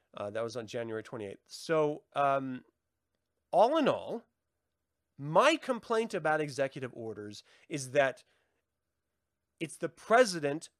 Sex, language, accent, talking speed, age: male, English, American, 115 wpm, 30-49